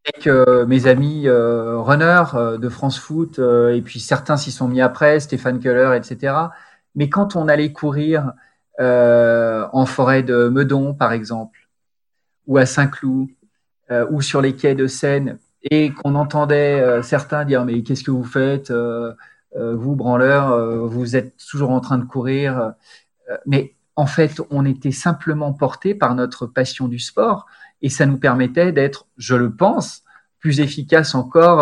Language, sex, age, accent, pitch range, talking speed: French, male, 40-59, French, 125-150 Hz, 165 wpm